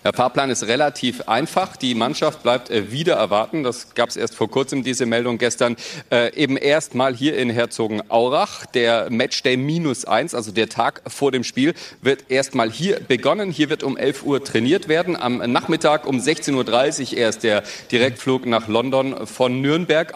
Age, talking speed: 40-59, 180 wpm